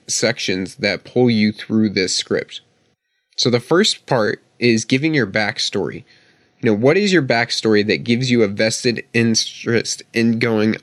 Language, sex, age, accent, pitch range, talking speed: English, male, 20-39, American, 105-125 Hz, 160 wpm